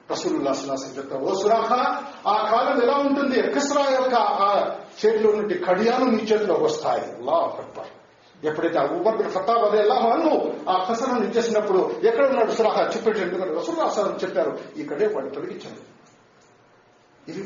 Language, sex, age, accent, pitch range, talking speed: Telugu, male, 50-69, native, 195-295 Hz, 120 wpm